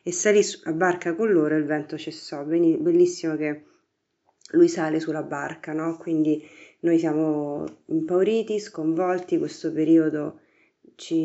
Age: 30-49